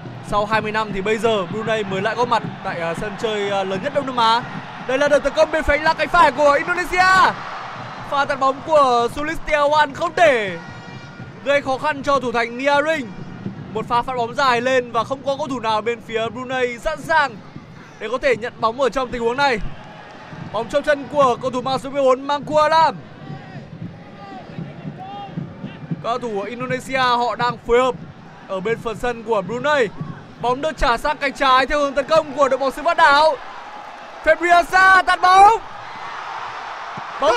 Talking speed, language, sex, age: 190 wpm, Vietnamese, male, 20-39